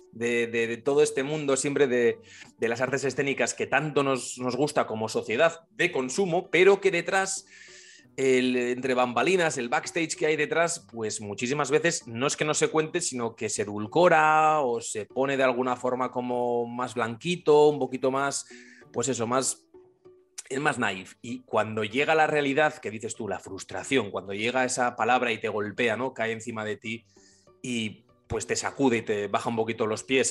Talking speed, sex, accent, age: 190 wpm, male, Spanish, 30-49